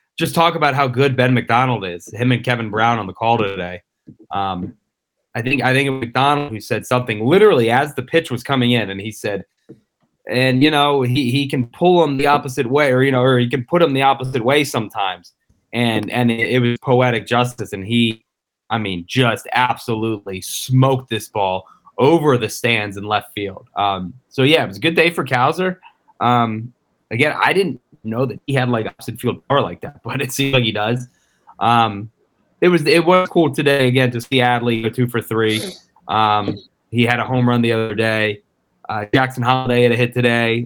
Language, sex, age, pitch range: English, male, 20-39, 110-130 Hz